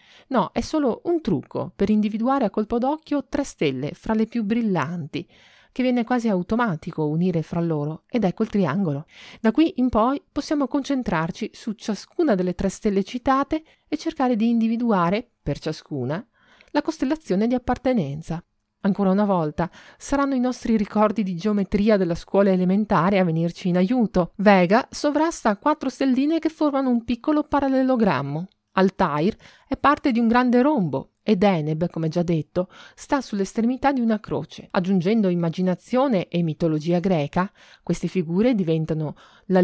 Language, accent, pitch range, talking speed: Italian, native, 175-250 Hz, 150 wpm